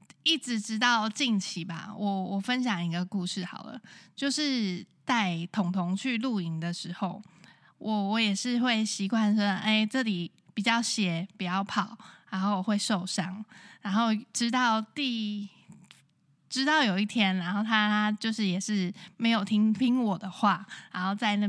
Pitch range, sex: 190-230 Hz, female